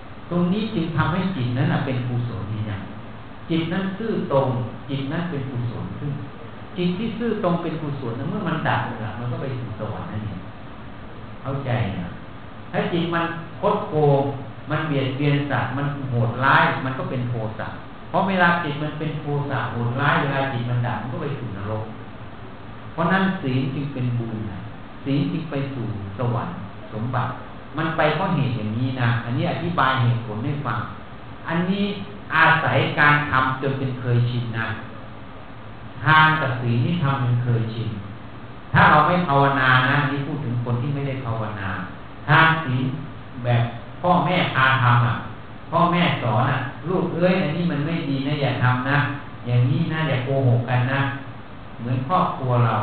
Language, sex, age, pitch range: Thai, male, 60-79, 115-155 Hz